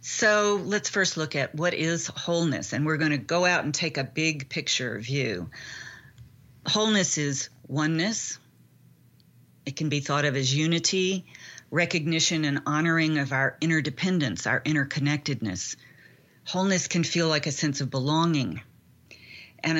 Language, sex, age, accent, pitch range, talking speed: English, female, 40-59, American, 135-165 Hz, 140 wpm